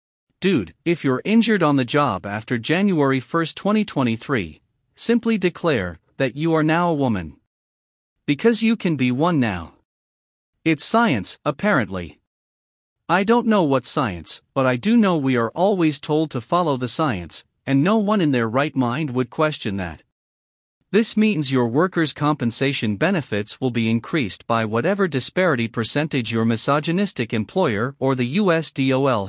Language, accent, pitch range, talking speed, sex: English, American, 115-170 Hz, 150 wpm, male